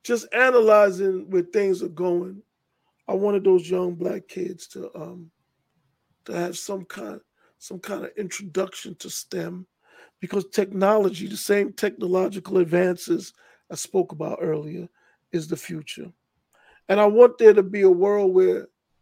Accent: American